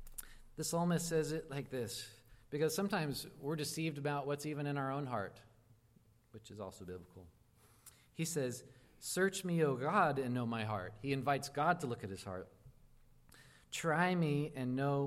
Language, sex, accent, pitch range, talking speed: English, male, American, 110-140 Hz, 170 wpm